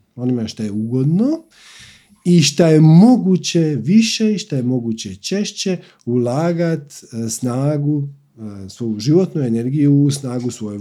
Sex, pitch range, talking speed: male, 120-175 Hz, 115 wpm